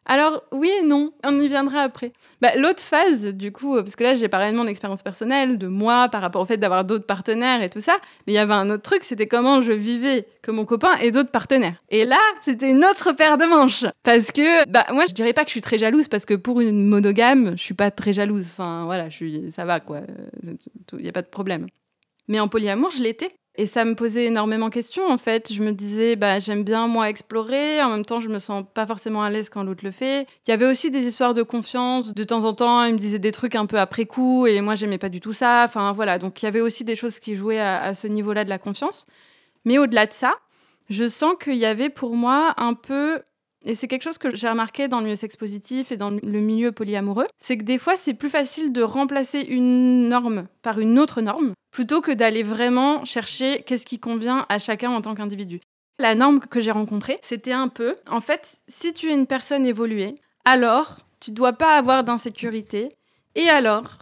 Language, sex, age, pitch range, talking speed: French, female, 20-39, 215-265 Hz, 240 wpm